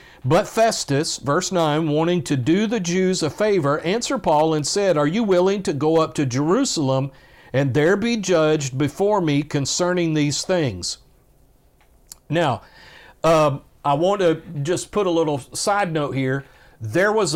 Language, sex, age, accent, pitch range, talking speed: English, male, 50-69, American, 145-185 Hz, 160 wpm